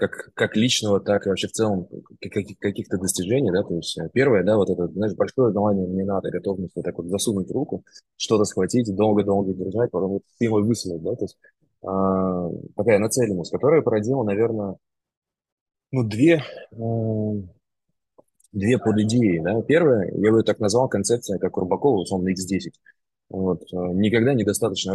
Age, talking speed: 20-39, 150 wpm